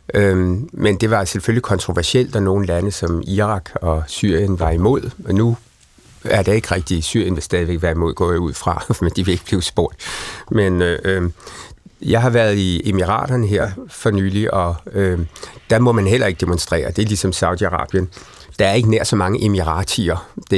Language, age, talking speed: Danish, 60-79, 185 wpm